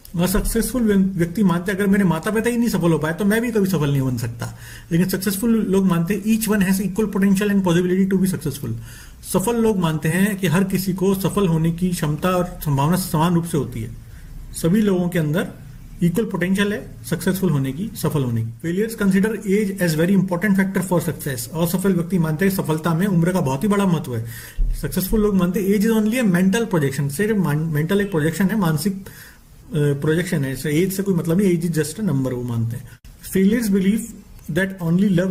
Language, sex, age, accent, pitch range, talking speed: Hindi, male, 40-59, native, 155-200 Hz, 200 wpm